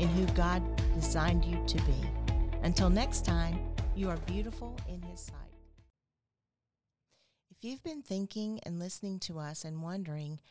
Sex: female